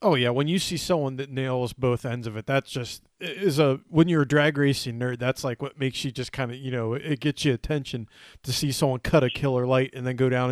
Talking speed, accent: 275 wpm, American